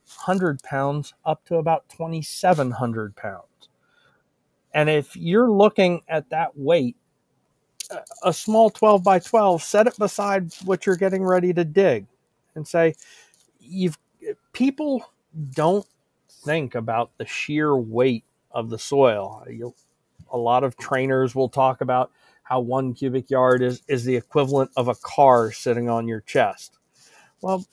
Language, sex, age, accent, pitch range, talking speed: English, male, 40-59, American, 130-185 Hz, 140 wpm